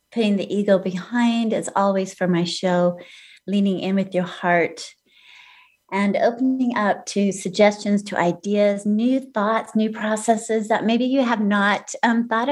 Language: English